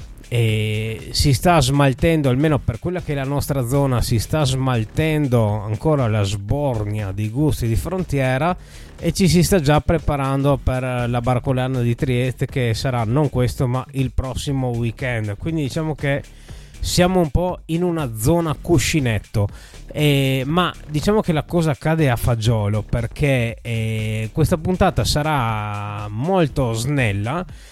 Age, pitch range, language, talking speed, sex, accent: 20-39, 115-155 Hz, Italian, 145 wpm, male, native